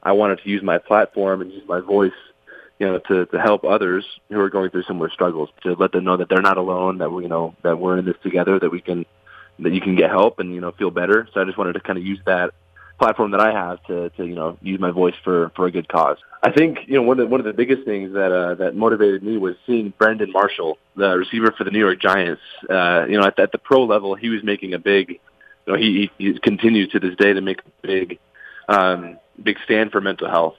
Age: 20-39